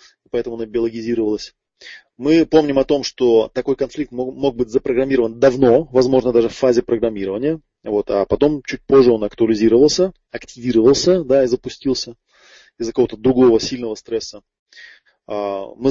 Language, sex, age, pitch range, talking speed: Russian, male, 20-39, 115-155 Hz, 135 wpm